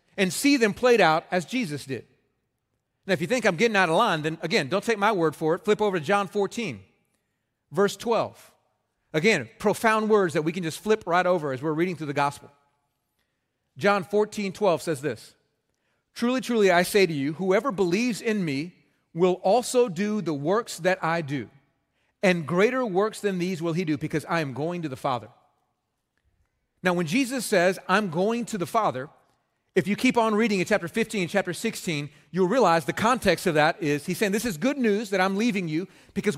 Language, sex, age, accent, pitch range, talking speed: English, male, 40-59, American, 170-230 Hz, 205 wpm